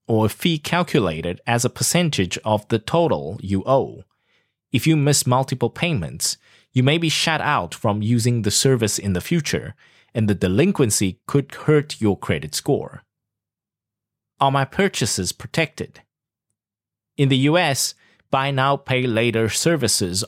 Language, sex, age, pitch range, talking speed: English, male, 30-49, 105-140 Hz, 145 wpm